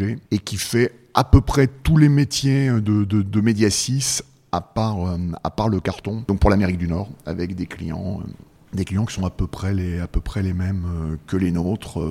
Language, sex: French, male